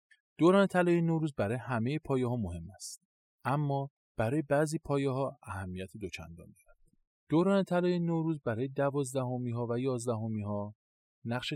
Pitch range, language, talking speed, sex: 100-140 Hz, Persian, 140 wpm, male